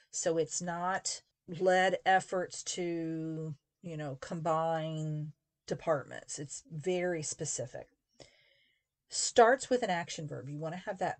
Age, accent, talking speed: 40-59, American, 125 wpm